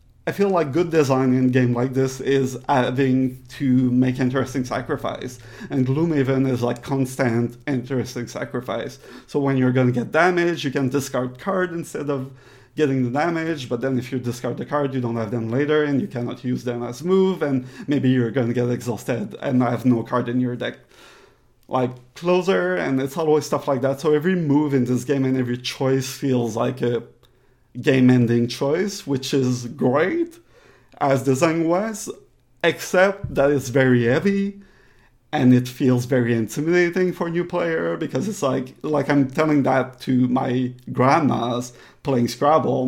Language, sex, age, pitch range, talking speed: English, male, 40-59, 125-150 Hz, 180 wpm